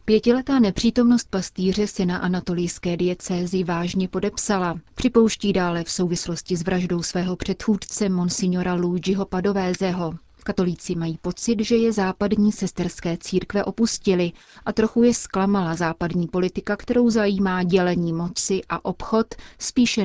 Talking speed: 125 wpm